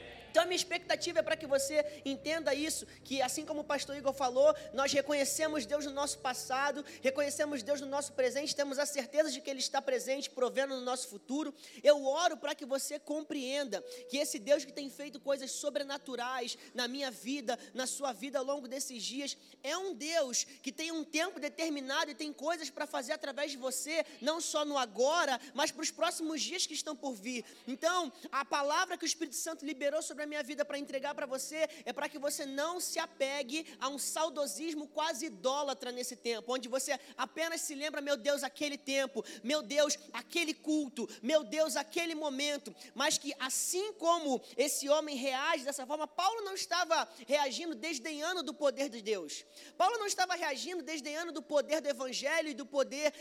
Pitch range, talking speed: 270-310 Hz, 195 wpm